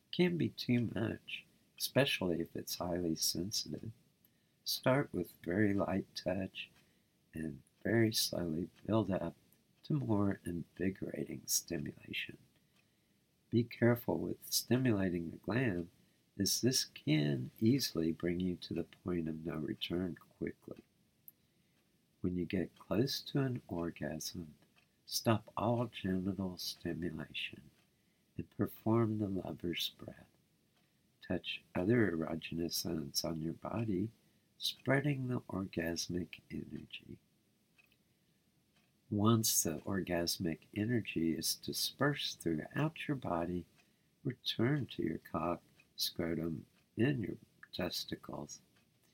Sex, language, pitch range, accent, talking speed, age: male, English, 85-115 Hz, American, 105 wpm, 60-79